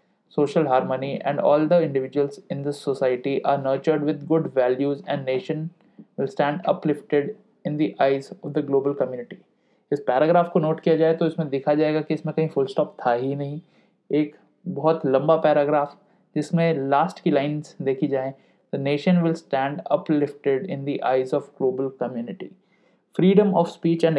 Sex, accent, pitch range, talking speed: male, native, 140-175 Hz, 170 wpm